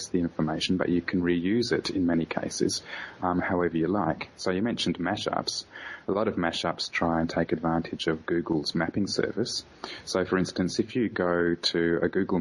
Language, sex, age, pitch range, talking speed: English, male, 30-49, 80-90 Hz, 190 wpm